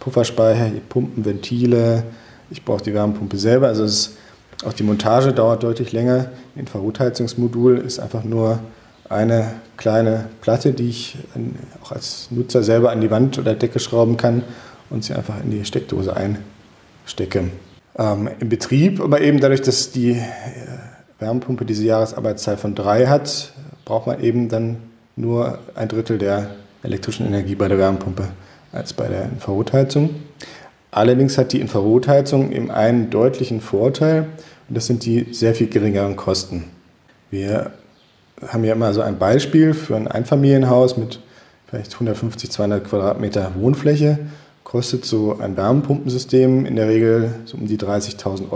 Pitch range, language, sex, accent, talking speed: 105-125 Hz, German, male, German, 145 wpm